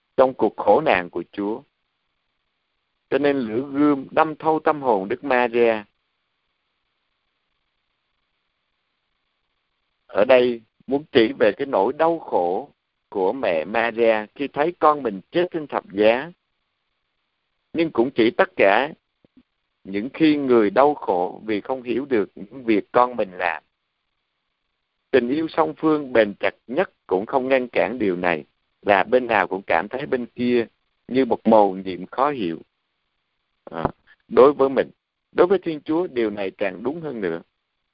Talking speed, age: 150 wpm, 50-69